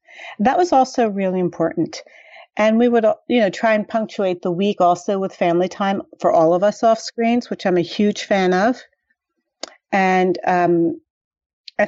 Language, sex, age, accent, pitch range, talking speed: English, female, 40-59, American, 175-225 Hz, 170 wpm